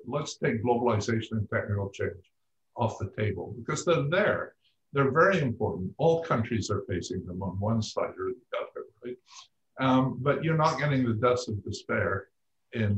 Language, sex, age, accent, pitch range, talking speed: English, male, 50-69, American, 105-130 Hz, 170 wpm